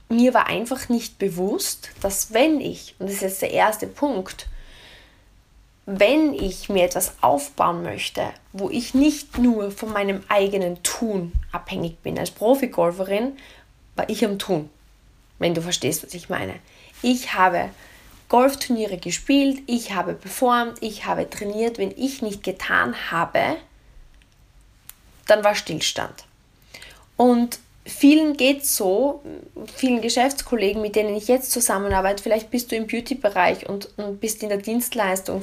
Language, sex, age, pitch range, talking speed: German, female, 20-39, 195-245 Hz, 145 wpm